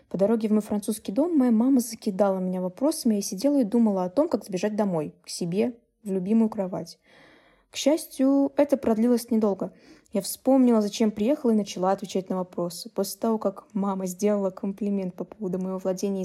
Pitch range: 200-255 Hz